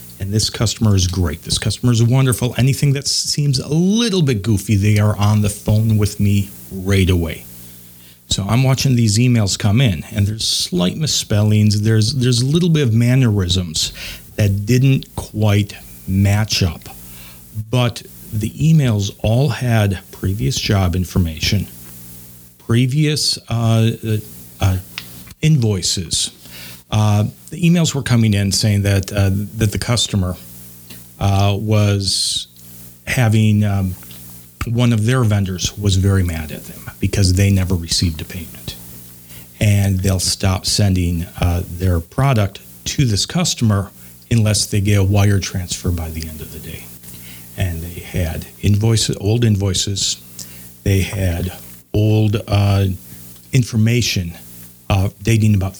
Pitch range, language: 85-110 Hz, English